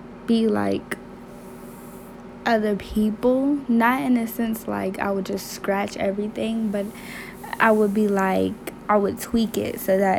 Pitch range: 195-220 Hz